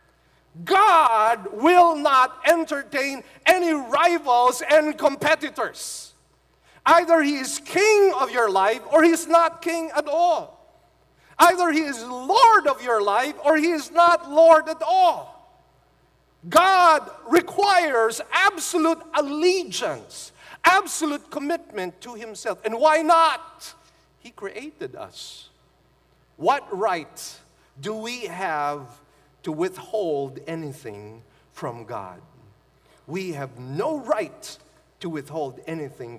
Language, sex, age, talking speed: English, male, 50-69, 110 wpm